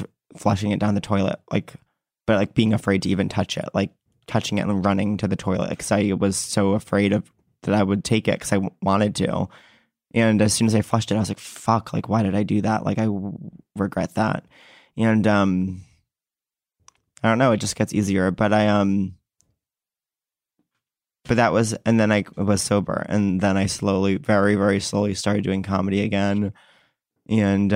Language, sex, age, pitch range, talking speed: English, male, 20-39, 95-105 Hz, 195 wpm